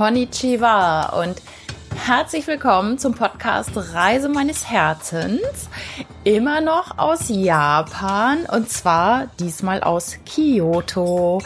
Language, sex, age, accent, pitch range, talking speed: German, female, 20-39, German, 190-265 Hz, 95 wpm